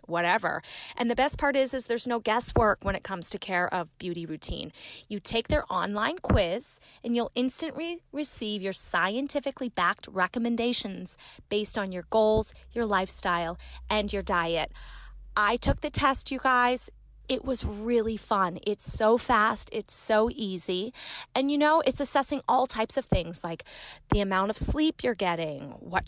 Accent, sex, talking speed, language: American, female, 170 wpm, English